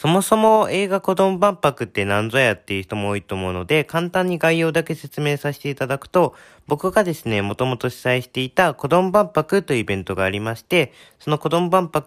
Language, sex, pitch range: Japanese, male, 105-160 Hz